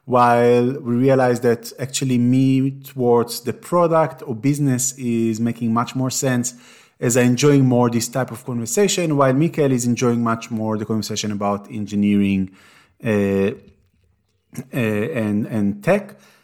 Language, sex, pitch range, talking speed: English, male, 110-130 Hz, 140 wpm